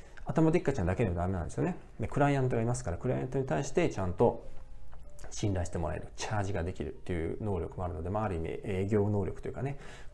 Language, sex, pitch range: Japanese, male, 90-130 Hz